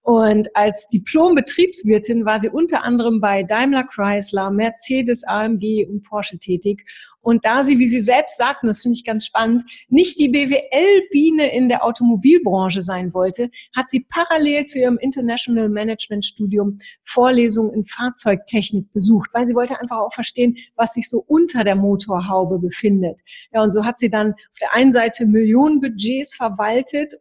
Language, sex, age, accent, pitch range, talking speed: German, female, 40-59, German, 210-255 Hz, 160 wpm